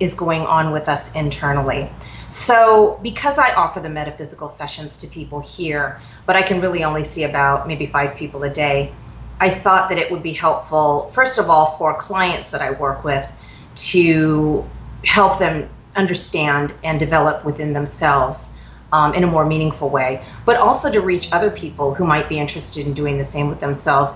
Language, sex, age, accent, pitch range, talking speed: English, female, 30-49, American, 145-185 Hz, 185 wpm